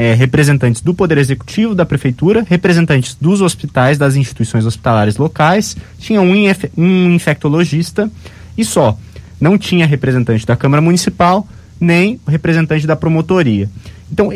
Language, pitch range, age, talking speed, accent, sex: Portuguese, 130-195 Hz, 20-39, 120 wpm, Brazilian, male